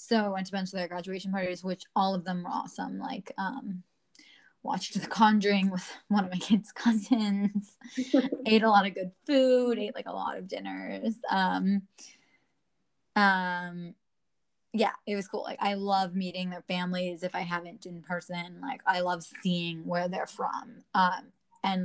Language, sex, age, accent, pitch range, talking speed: English, female, 20-39, American, 180-220 Hz, 180 wpm